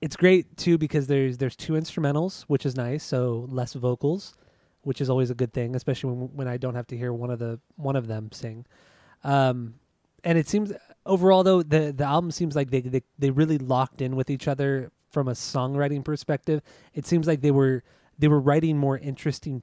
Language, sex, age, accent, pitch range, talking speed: English, male, 20-39, American, 125-150 Hz, 210 wpm